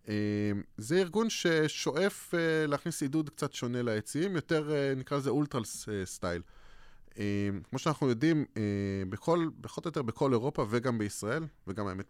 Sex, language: male, Hebrew